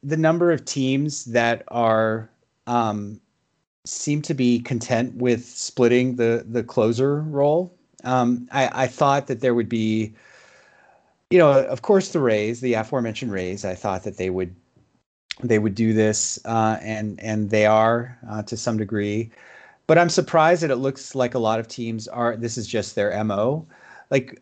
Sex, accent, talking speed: male, American, 170 wpm